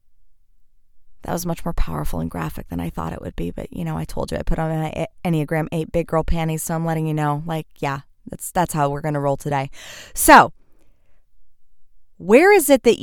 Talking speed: 220 wpm